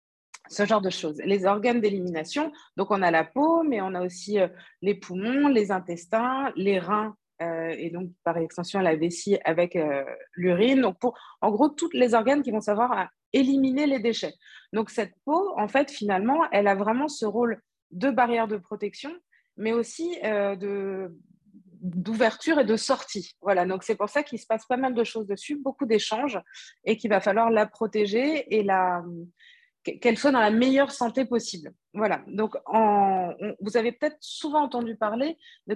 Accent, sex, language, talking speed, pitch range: French, female, French, 180 wpm, 190-255 Hz